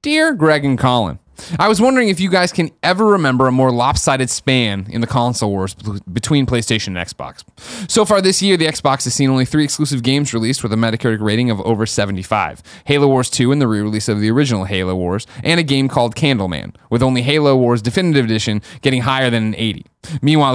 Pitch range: 110-145 Hz